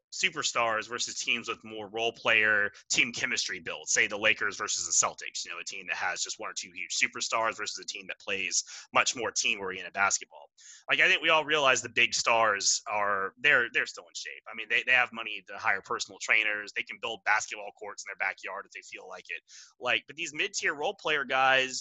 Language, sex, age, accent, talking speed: English, male, 20-39, American, 225 wpm